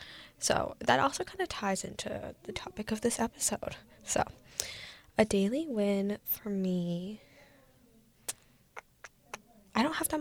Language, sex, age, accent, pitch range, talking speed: English, female, 10-29, American, 190-225 Hz, 130 wpm